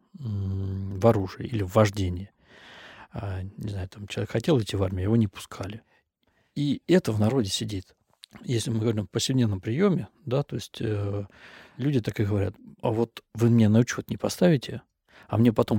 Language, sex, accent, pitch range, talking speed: Russian, male, native, 100-120 Hz, 175 wpm